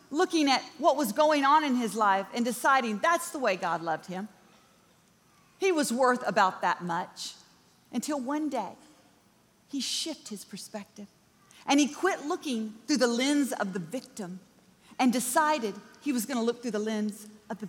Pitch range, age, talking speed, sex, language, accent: 240-345 Hz, 40-59, 175 wpm, female, English, American